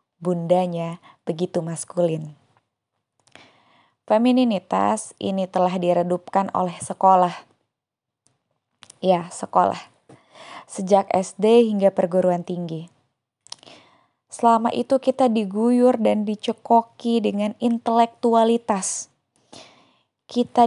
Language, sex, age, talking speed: Indonesian, female, 20-39, 75 wpm